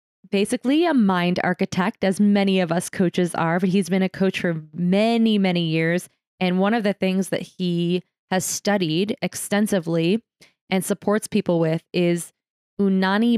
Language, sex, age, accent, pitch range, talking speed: English, female, 20-39, American, 180-215 Hz, 155 wpm